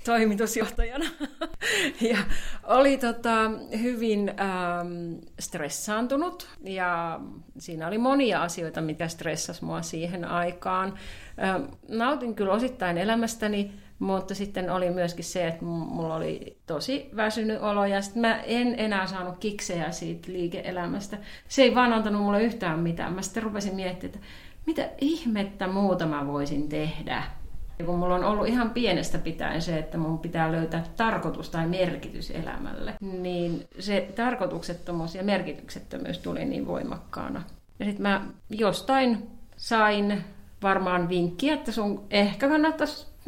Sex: female